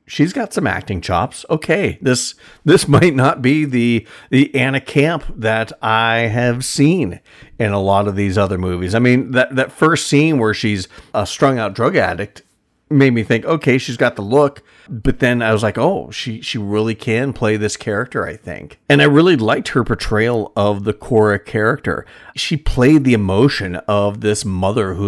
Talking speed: 190 wpm